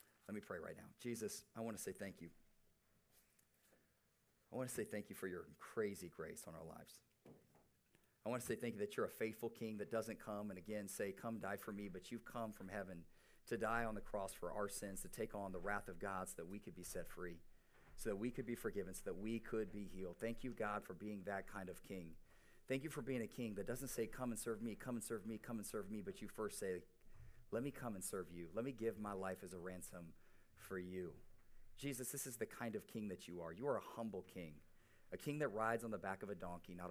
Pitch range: 90-115 Hz